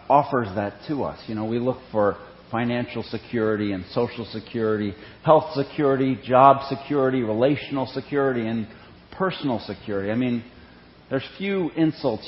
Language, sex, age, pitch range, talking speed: English, male, 40-59, 105-135 Hz, 135 wpm